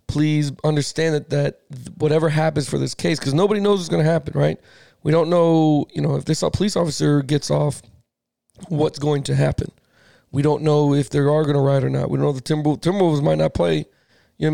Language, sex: English, male